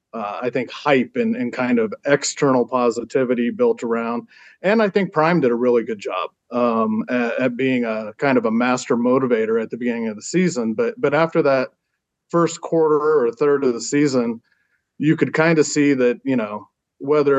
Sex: male